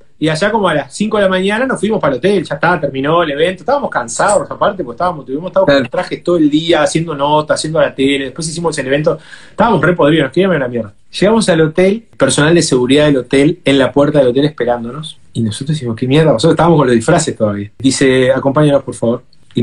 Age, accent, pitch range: 30-49, Argentinian, 130-180 Hz